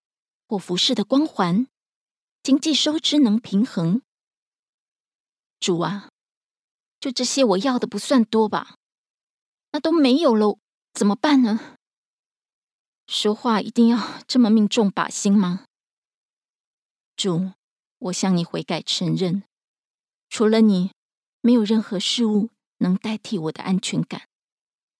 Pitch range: 195-245 Hz